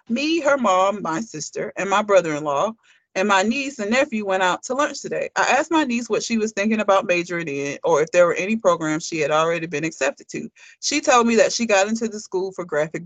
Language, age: English, 30-49